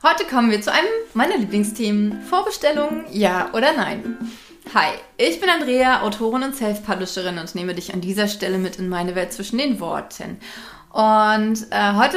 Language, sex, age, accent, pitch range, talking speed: German, female, 20-39, German, 185-255 Hz, 170 wpm